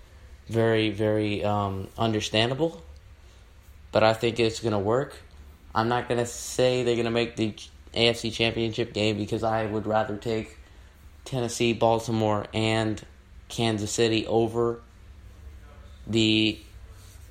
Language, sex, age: English, male, 20-39